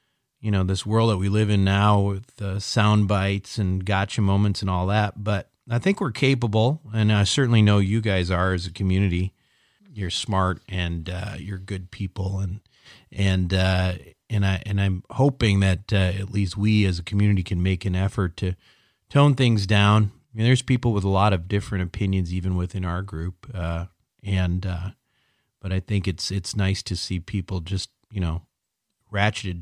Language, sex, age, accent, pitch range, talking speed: English, male, 40-59, American, 95-110 Hz, 195 wpm